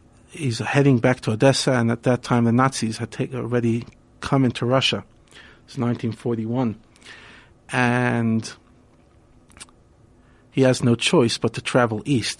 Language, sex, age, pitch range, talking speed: English, male, 50-69, 115-130 Hz, 135 wpm